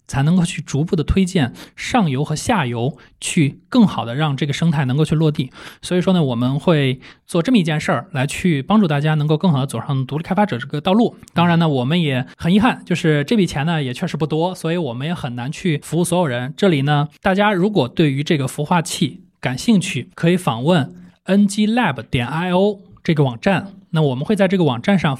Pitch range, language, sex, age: 140-185 Hz, Chinese, male, 20-39